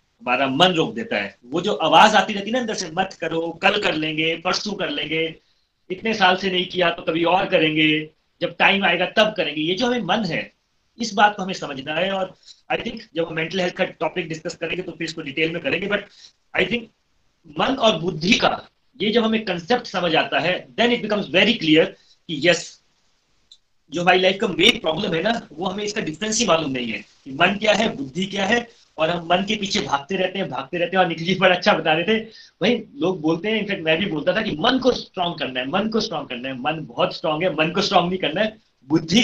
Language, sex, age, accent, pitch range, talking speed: Hindi, male, 30-49, native, 160-205 Hz, 235 wpm